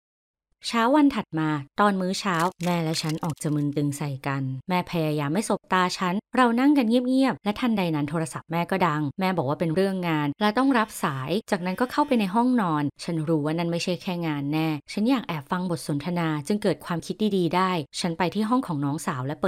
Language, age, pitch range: Thai, 20-39, 155-210 Hz